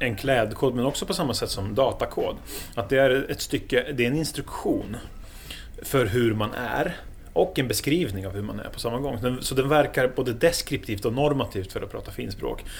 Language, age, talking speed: English, 30-49, 200 wpm